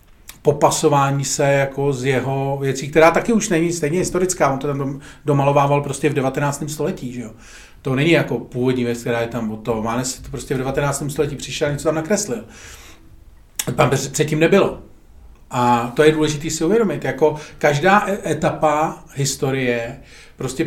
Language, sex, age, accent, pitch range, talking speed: Czech, male, 40-59, native, 140-170 Hz, 165 wpm